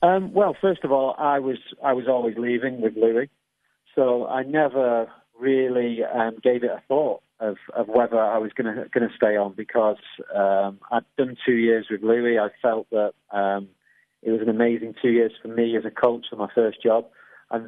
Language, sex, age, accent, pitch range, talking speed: English, male, 40-59, British, 110-125 Hz, 205 wpm